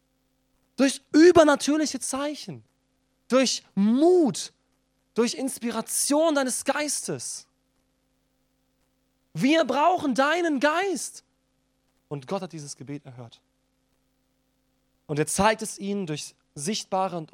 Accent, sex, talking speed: German, male, 95 wpm